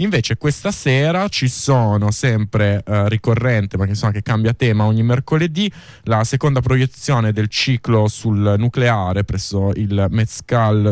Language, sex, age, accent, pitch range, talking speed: Italian, male, 20-39, native, 110-135 Hz, 130 wpm